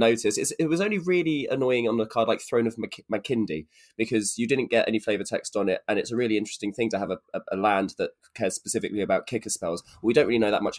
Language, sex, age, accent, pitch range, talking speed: English, male, 20-39, British, 95-125 Hz, 265 wpm